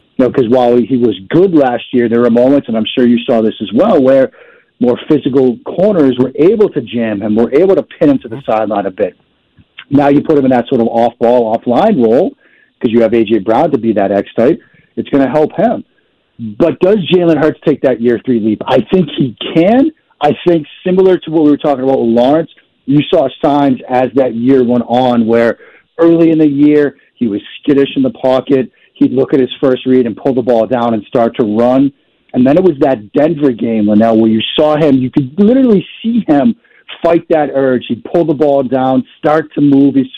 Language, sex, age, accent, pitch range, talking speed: English, male, 50-69, American, 120-155 Hz, 225 wpm